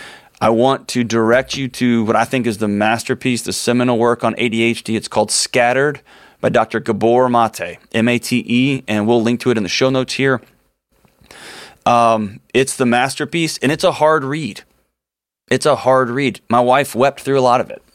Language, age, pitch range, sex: English, 20-39, 110-135 Hz, male